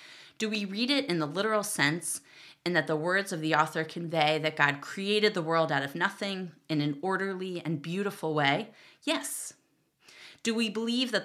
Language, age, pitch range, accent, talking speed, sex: English, 30-49, 155-205 Hz, American, 185 wpm, female